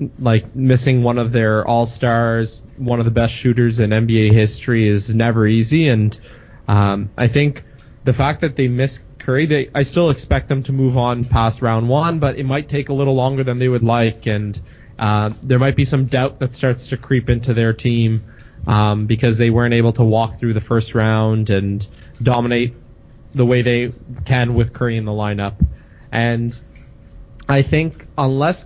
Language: English